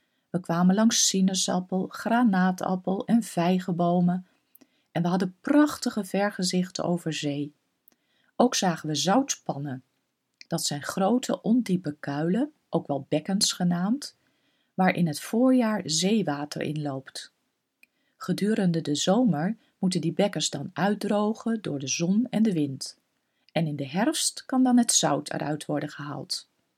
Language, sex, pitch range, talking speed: Dutch, female, 160-220 Hz, 130 wpm